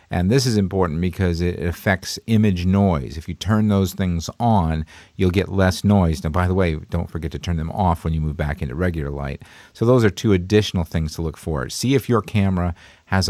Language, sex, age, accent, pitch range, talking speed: English, male, 50-69, American, 85-105 Hz, 225 wpm